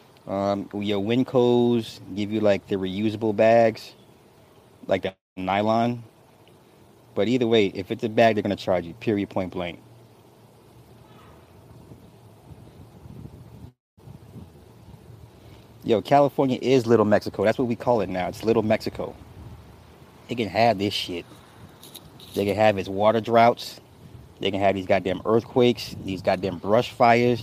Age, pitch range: 30-49, 100-120 Hz